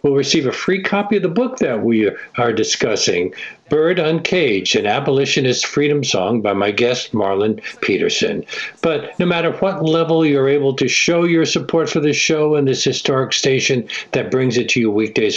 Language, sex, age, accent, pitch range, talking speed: English, male, 60-79, American, 110-155 Hz, 185 wpm